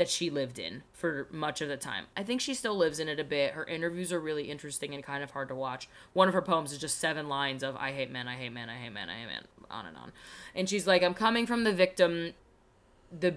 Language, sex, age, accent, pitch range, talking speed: English, female, 20-39, American, 150-205 Hz, 280 wpm